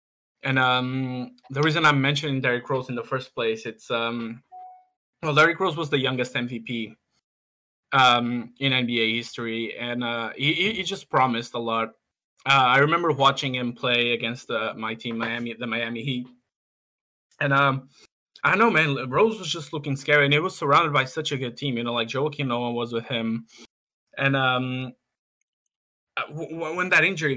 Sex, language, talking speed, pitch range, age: male, English, 175 wpm, 115-140 Hz, 20-39